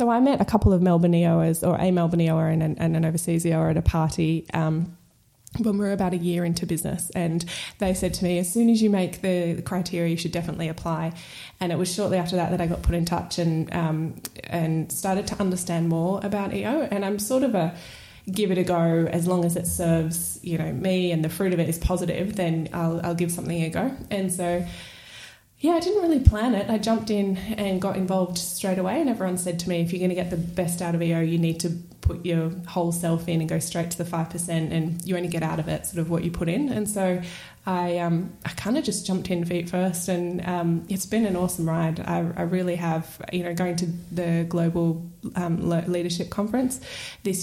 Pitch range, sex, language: 165-185 Hz, female, English